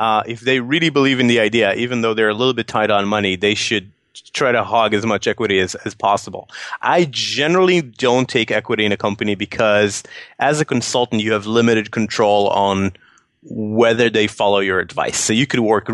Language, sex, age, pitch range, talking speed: English, male, 30-49, 105-125 Hz, 205 wpm